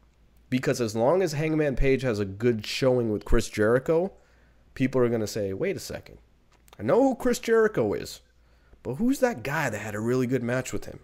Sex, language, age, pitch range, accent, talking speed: male, English, 30-49, 95-135 Hz, American, 210 wpm